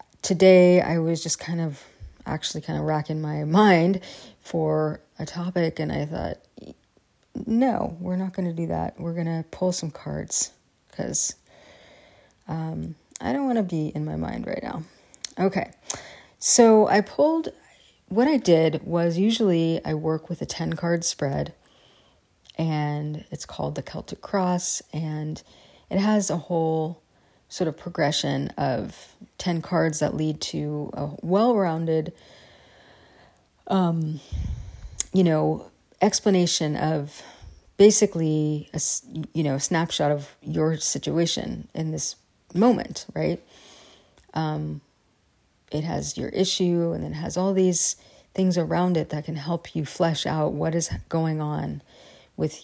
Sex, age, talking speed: female, 30-49, 140 wpm